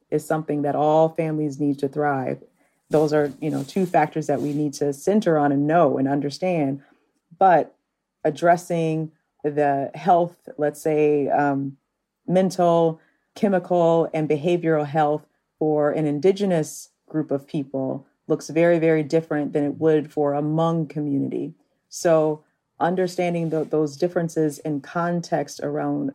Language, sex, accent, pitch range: English, female, American, 145-170 Hz